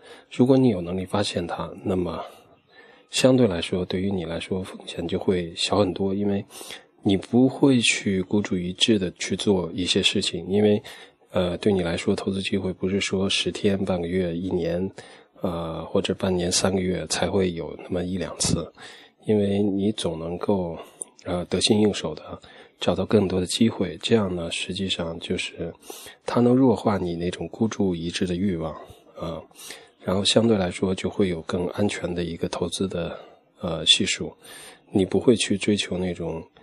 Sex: male